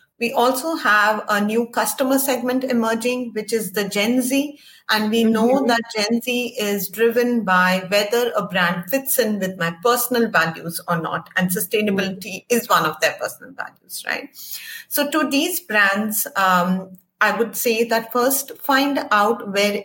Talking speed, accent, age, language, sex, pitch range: 165 wpm, Indian, 30-49, English, female, 185-245 Hz